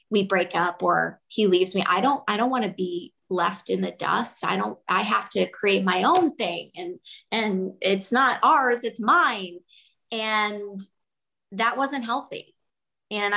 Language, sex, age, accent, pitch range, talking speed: English, female, 30-49, American, 190-235 Hz, 175 wpm